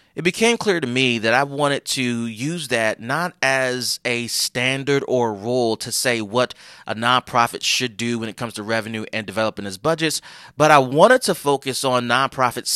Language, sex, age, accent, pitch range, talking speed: English, male, 30-49, American, 110-135 Hz, 190 wpm